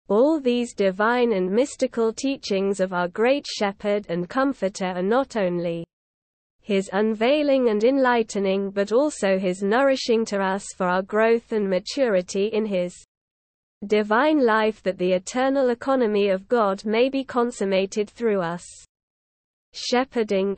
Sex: female